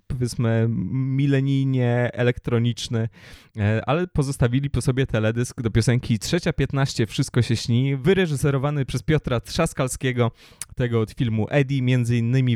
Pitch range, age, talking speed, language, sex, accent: 115-140 Hz, 20-39, 115 wpm, Polish, male, native